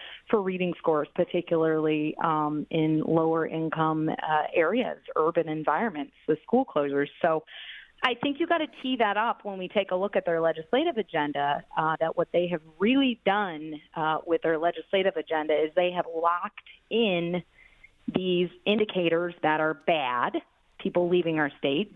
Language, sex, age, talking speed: English, female, 30-49, 160 wpm